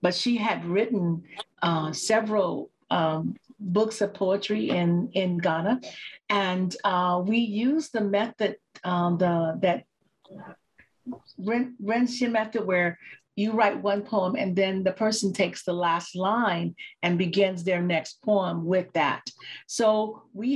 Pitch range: 180-215 Hz